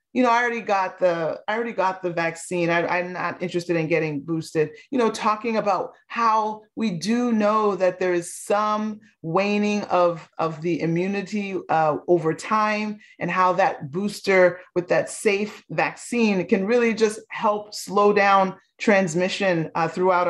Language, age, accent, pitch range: English, 30-49, American, 180-225 Hz